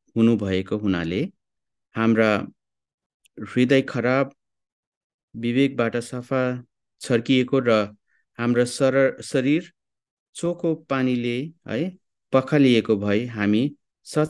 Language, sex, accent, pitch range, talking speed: English, male, Indian, 105-130 Hz, 100 wpm